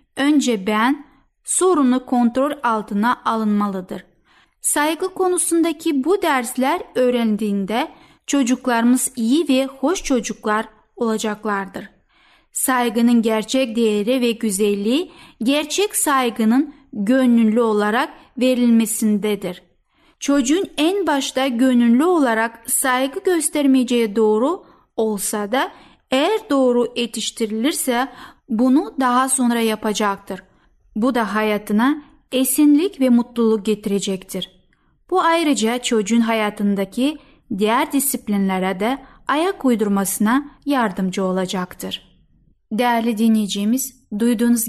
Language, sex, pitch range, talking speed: Turkish, female, 215-270 Hz, 85 wpm